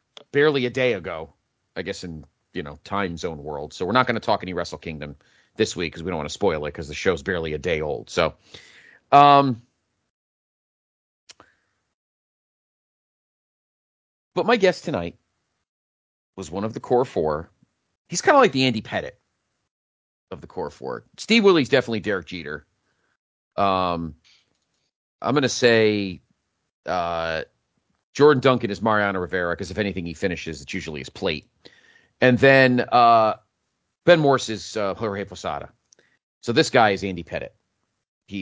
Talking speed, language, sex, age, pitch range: 160 wpm, English, male, 40-59, 80-120 Hz